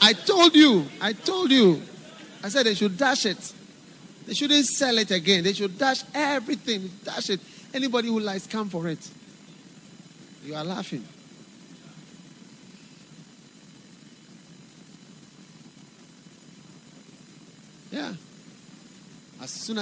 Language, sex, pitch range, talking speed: English, male, 185-240 Hz, 105 wpm